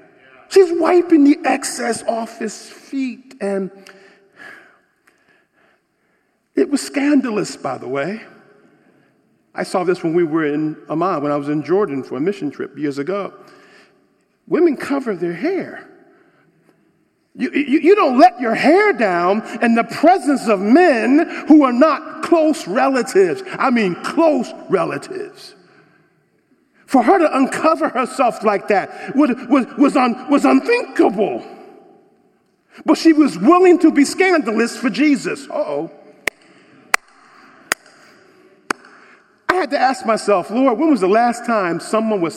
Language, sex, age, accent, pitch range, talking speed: English, male, 50-69, American, 230-345 Hz, 130 wpm